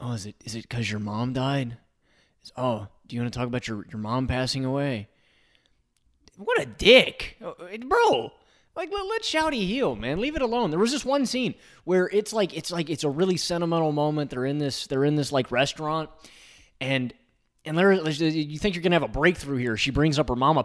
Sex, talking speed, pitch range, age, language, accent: male, 215 wpm, 120-180 Hz, 20-39, English, American